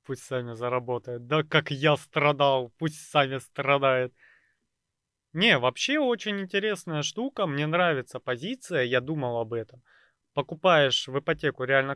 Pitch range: 130-165 Hz